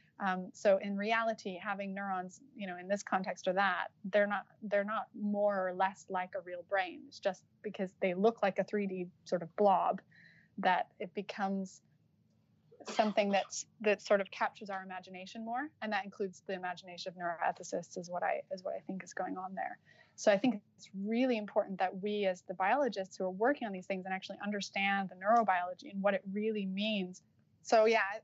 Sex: female